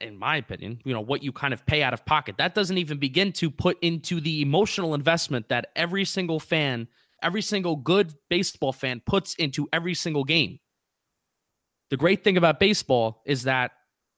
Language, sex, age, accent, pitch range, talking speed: English, male, 20-39, American, 135-175 Hz, 185 wpm